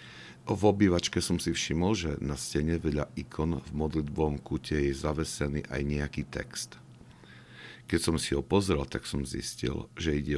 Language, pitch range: Slovak, 75-120 Hz